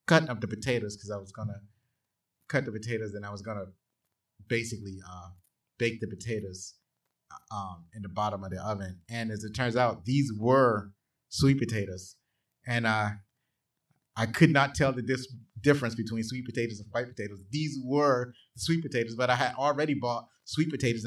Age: 30-49